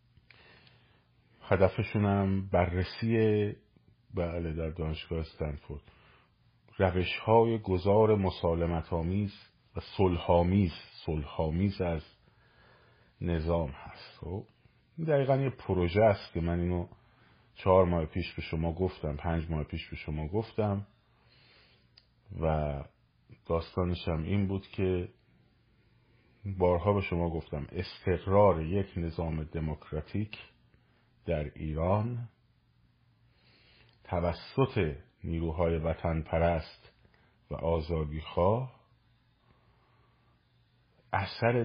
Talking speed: 85 wpm